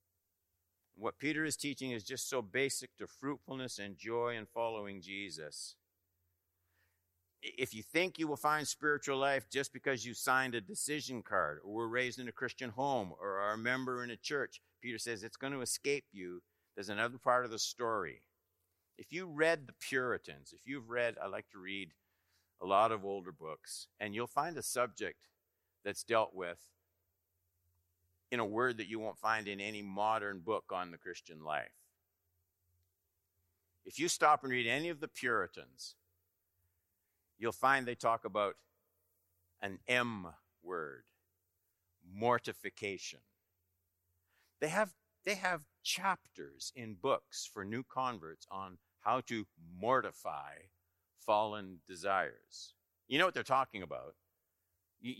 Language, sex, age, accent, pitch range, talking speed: English, male, 50-69, American, 90-125 Hz, 150 wpm